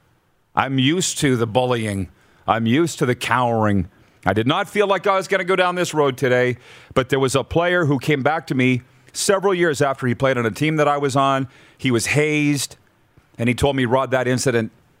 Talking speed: 225 wpm